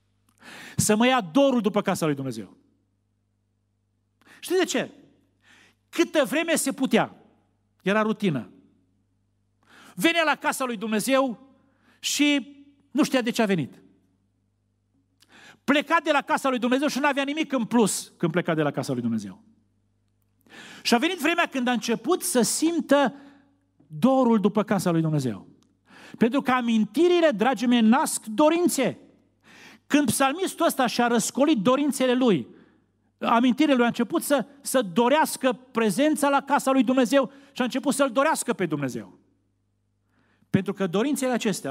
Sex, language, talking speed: male, Romanian, 140 wpm